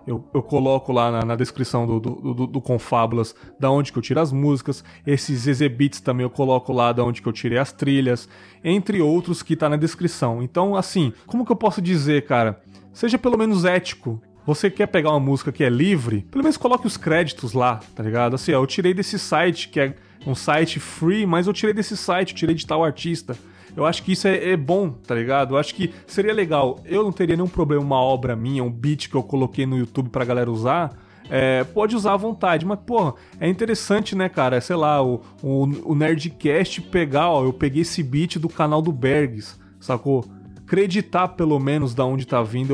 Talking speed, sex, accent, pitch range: 210 wpm, male, Brazilian, 125-180 Hz